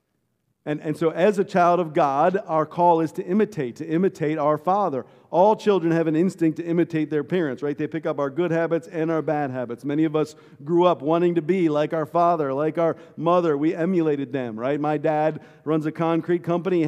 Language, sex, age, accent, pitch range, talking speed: English, male, 50-69, American, 145-175 Hz, 220 wpm